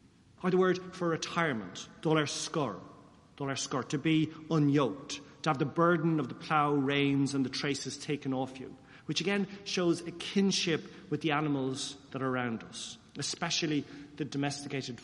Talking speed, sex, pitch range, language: 150 wpm, male, 130-165 Hz, English